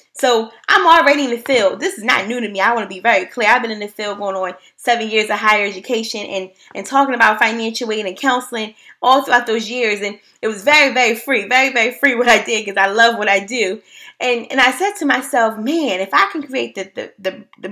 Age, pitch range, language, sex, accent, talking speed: 20-39, 225-285 Hz, English, female, American, 255 wpm